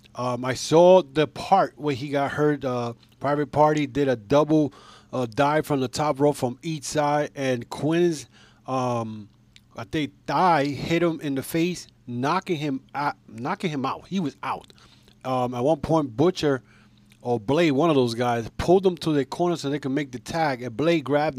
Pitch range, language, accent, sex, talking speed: 120-160 Hz, English, American, male, 180 wpm